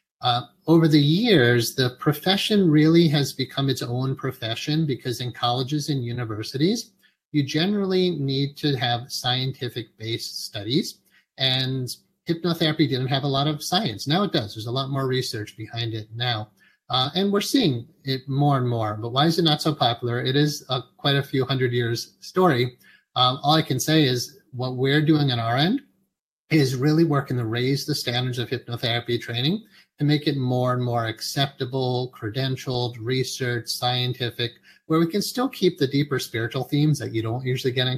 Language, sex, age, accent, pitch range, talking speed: English, male, 30-49, American, 125-150 Hz, 180 wpm